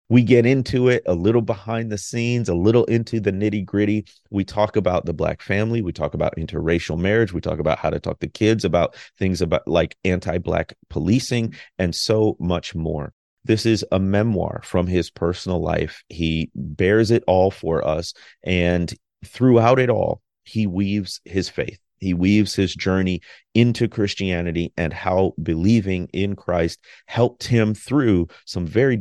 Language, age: English, 30-49